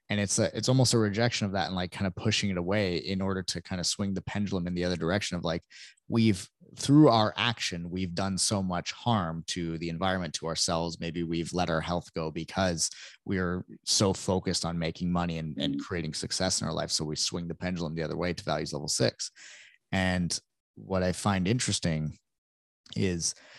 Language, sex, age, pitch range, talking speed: English, male, 20-39, 85-105 Hz, 210 wpm